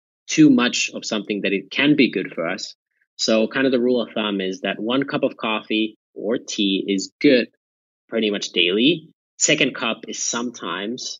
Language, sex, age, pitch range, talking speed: English, male, 30-49, 100-115 Hz, 190 wpm